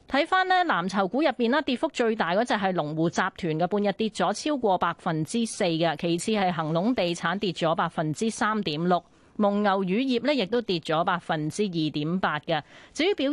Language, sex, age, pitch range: Chinese, female, 30-49, 165-225 Hz